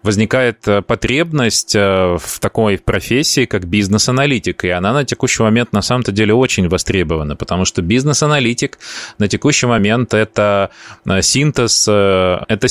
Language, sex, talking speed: Russian, male, 120 wpm